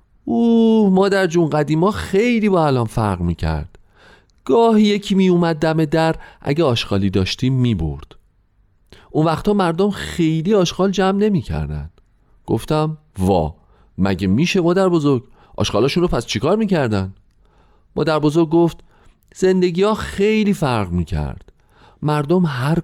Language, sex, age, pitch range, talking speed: Persian, male, 40-59, 100-165 Hz, 120 wpm